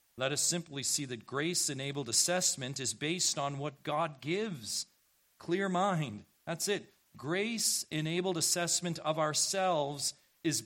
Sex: male